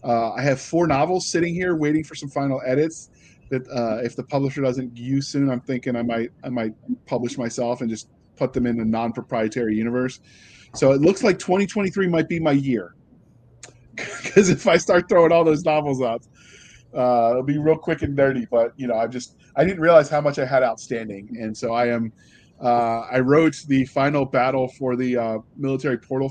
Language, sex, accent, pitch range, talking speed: English, male, American, 120-155 Hz, 205 wpm